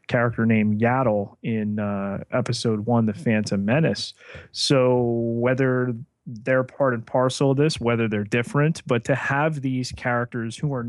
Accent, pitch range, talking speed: American, 115-140 Hz, 155 wpm